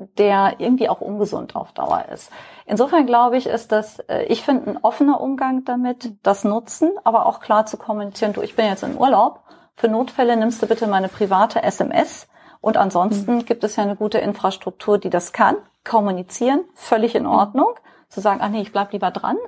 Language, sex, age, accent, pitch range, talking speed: German, female, 30-49, German, 200-245 Hz, 190 wpm